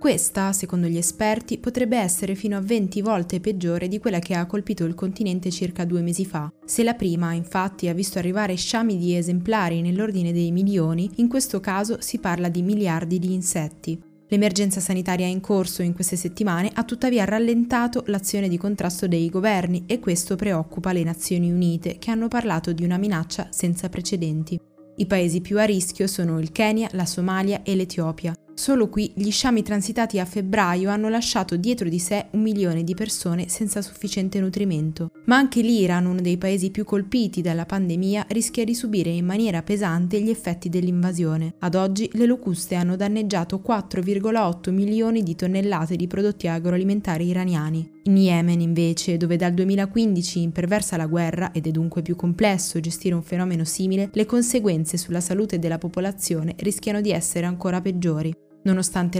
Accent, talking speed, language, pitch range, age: native, 170 wpm, Italian, 175-205 Hz, 20-39